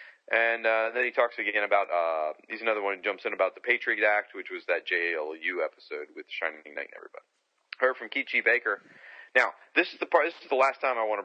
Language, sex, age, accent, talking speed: English, male, 30-49, American, 250 wpm